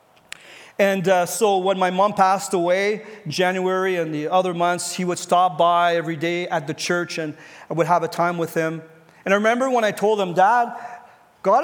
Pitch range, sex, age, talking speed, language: 180-240 Hz, male, 40-59, 200 wpm, English